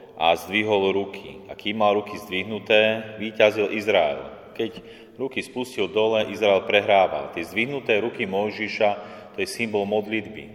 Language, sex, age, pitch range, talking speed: Slovak, male, 30-49, 95-110 Hz, 135 wpm